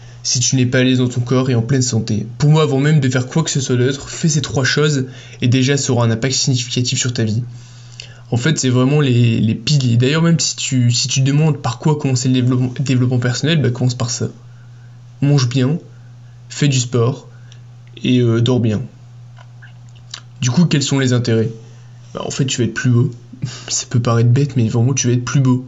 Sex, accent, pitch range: male, French, 120-135 Hz